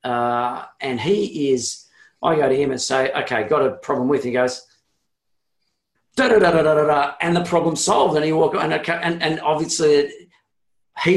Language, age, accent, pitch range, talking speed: English, 40-59, Australian, 125-160 Hz, 195 wpm